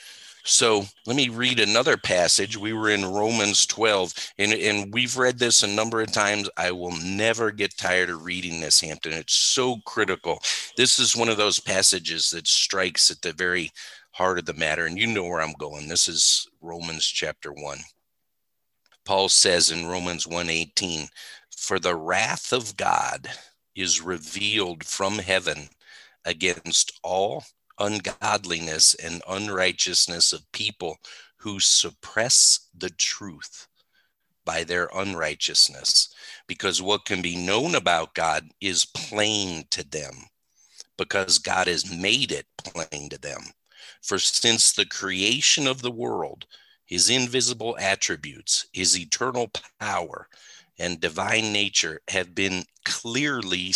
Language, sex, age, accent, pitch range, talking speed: English, male, 50-69, American, 90-115 Hz, 140 wpm